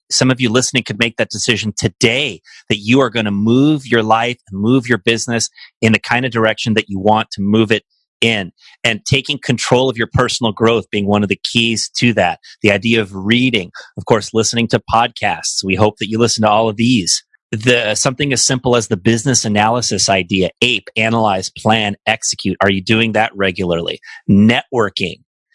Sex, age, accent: male, 30-49, American